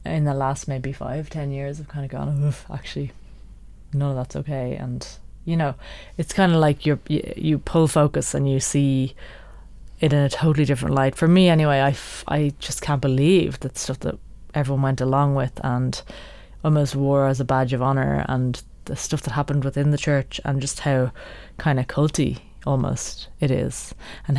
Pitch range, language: 135-160 Hz, English